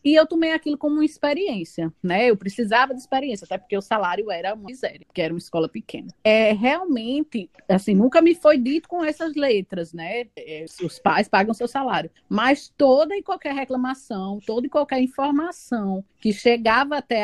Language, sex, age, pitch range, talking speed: Portuguese, female, 20-39, 195-270 Hz, 180 wpm